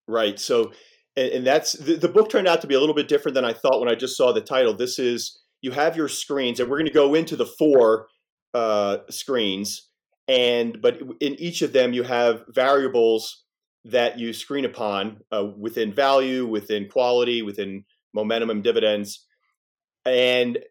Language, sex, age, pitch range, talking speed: English, male, 30-49, 110-170 Hz, 180 wpm